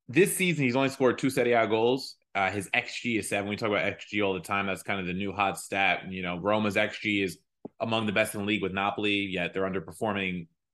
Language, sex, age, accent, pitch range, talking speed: English, male, 20-39, American, 105-130 Hz, 245 wpm